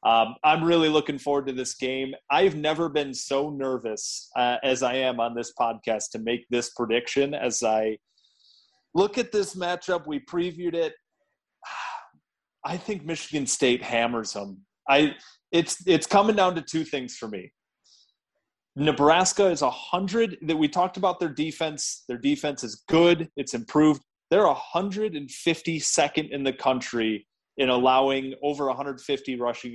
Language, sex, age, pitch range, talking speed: English, male, 30-49, 125-160 Hz, 160 wpm